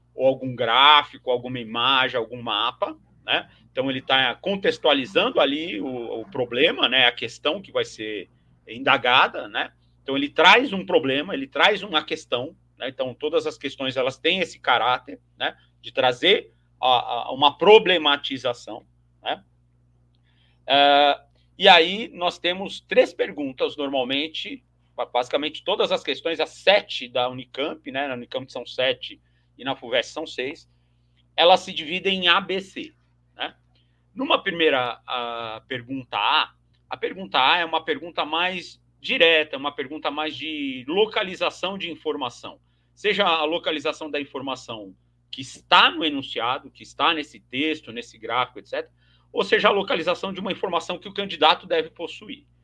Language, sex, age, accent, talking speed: Portuguese, male, 40-59, Brazilian, 145 wpm